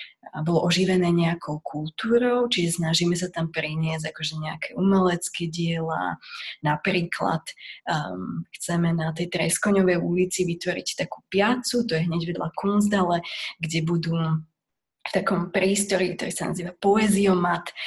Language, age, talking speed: Slovak, 20-39, 130 wpm